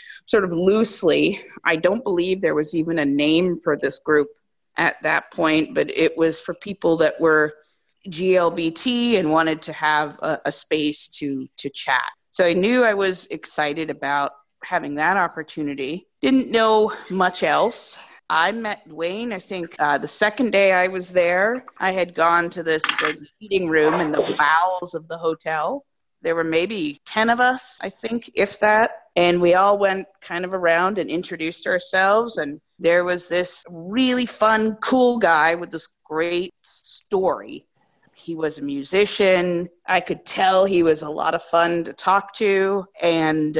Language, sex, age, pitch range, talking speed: English, female, 30-49, 160-200 Hz, 170 wpm